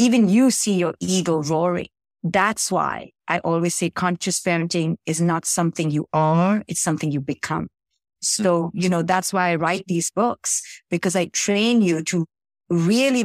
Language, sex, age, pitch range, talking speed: English, female, 50-69, 170-205 Hz, 170 wpm